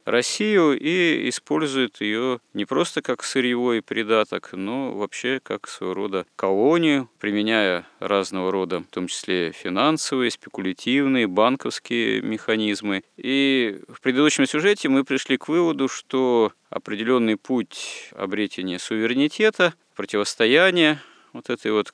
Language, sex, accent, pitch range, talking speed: Russian, male, native, 95-130 Hz, 115 wpm